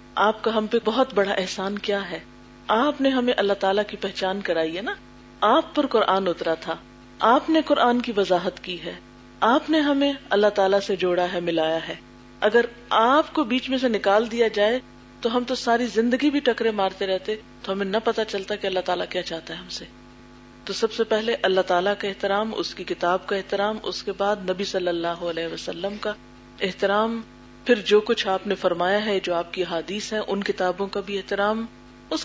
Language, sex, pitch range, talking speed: Urdu, female, 185-225 Hz, 210 wpm